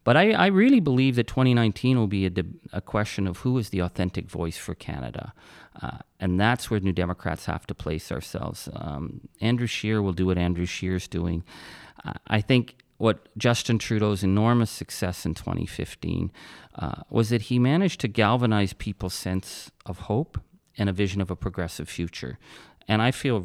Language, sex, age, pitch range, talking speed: English, male, 40-59, 90-115 Hz, 180 wpm